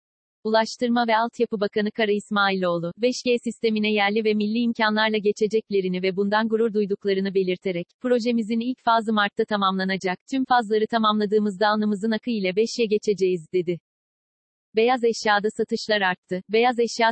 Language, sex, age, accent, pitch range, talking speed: Turkish, female, 40-59, native, 205-230 Hz, 135 wpm